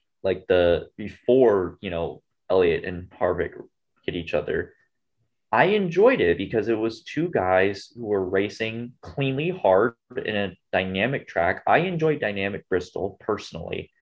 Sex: male